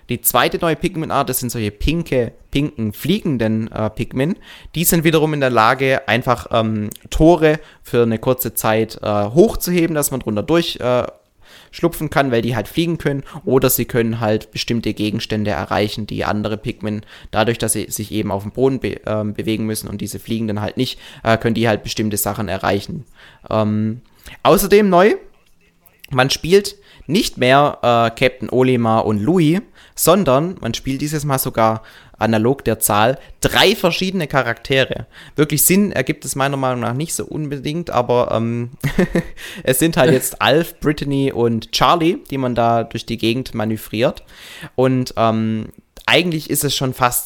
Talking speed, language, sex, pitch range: 165 wpm, German, male, 110-140 Hz